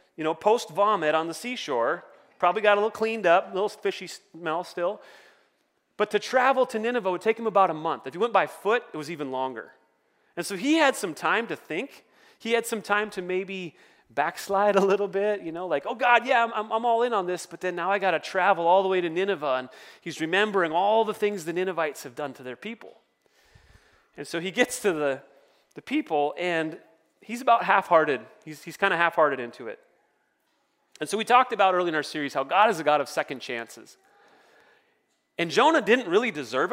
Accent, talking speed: American, 220 wpm